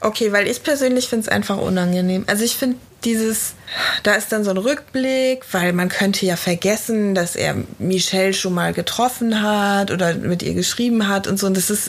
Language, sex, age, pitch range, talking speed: German, female, 20-39, 195-245 Hz, 200 wpm